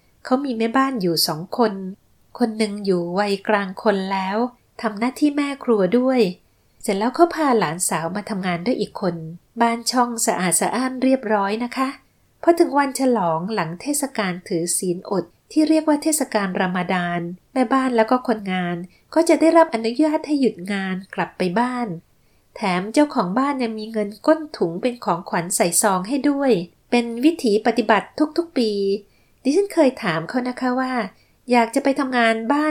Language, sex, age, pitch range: Thai, female, 30-49, 195-270 Hz